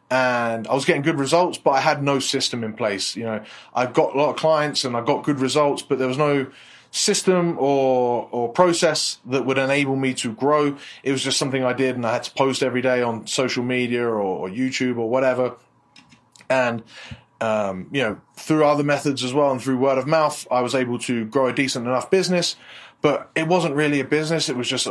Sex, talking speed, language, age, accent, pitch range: male, 225 wpm, English, 20-39, British, 120-140 Hz